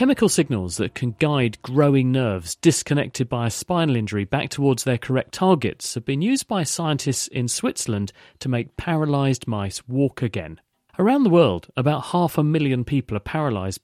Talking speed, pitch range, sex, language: 175 wpm, 115-155 Hz, male, English